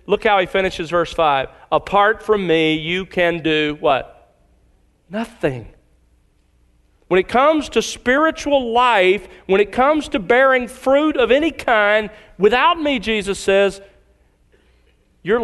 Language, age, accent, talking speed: English, 40-59, American, 130 wpm